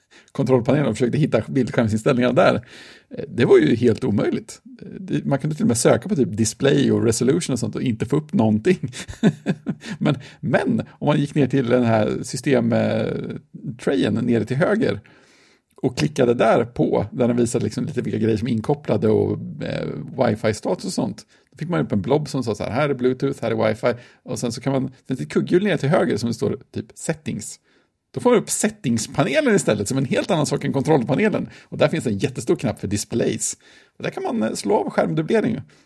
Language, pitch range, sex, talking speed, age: Swedish, 120-175 Hz, male, 200 wpm, 50-69